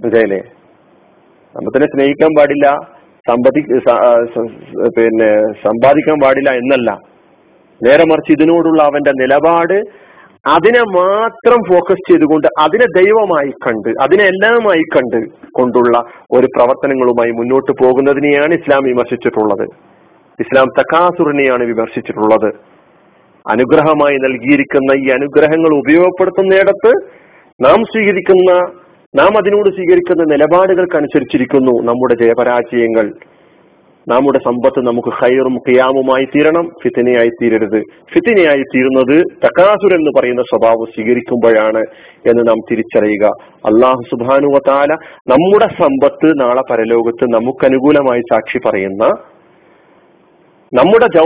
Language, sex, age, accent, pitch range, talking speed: Malayalam, male, 40-59, native, 125-170 Hz, 90 wpm